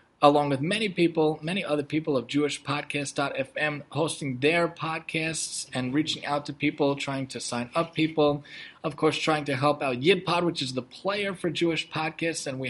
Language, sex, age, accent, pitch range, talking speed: English, male, 30-49, American, 140-170 Hz, 185 wpm